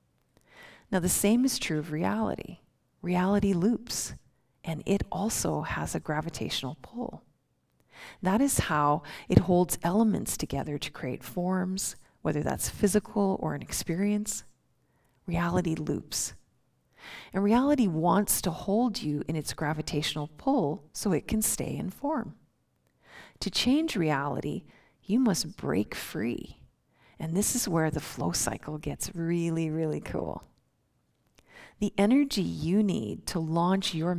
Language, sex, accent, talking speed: English, female, American, 130 wpm